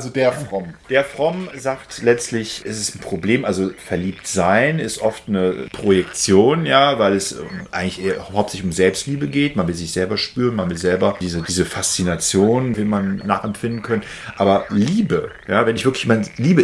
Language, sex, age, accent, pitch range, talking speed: German, male, 40-59, German, 95-120 Hz, 175 wpm